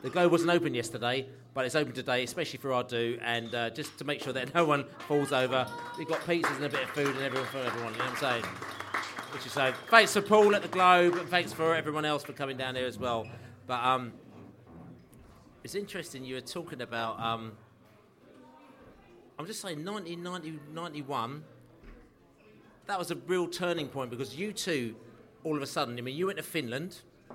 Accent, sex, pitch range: British, male, 125-155 Hz